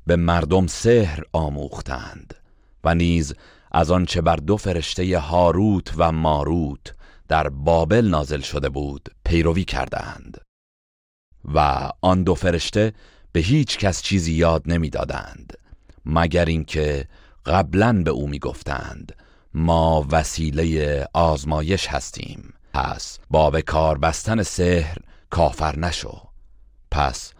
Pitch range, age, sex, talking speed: 75-90 Hz, 40-59, male, 110 wpm